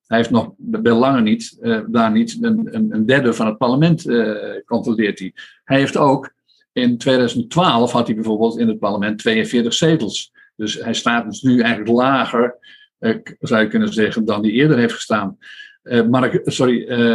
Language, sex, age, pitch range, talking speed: Dutch, male, 50-69, 120-180 Hz, 180 wpm